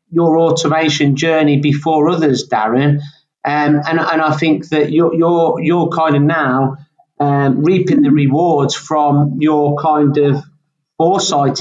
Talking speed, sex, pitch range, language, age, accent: 140 wpm, male, 145-165 Hz, English, 40-59, British